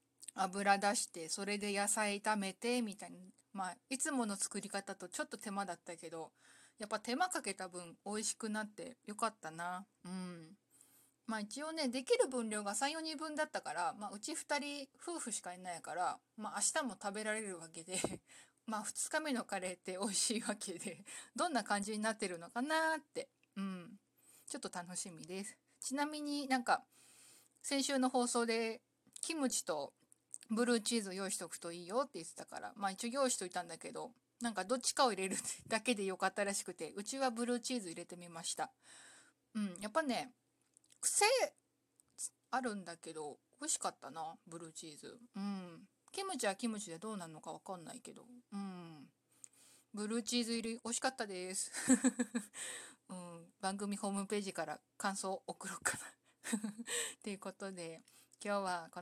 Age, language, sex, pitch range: 20-39, Japanese, female, 190-245 Hz